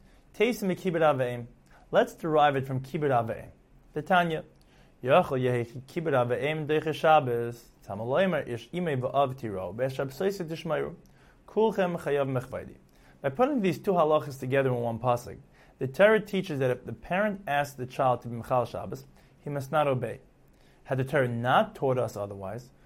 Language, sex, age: English, male, 30-49